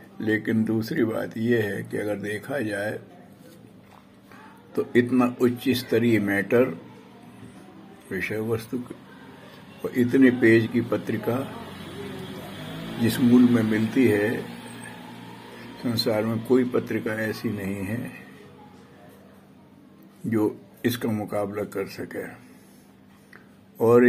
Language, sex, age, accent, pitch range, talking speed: Hindi, male, 60-79, native, 110-125 Hz, 95 wpm